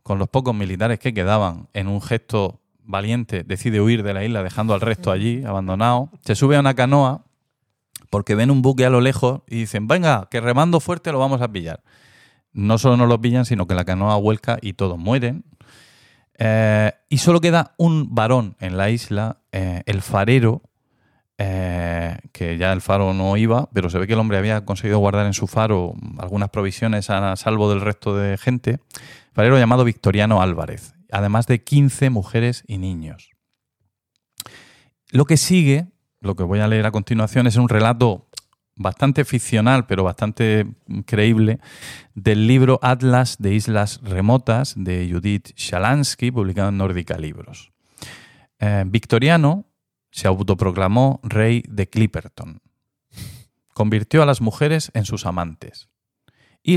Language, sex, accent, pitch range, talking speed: Spanish, male, Spanish, 100-125 Hz, 160 wpm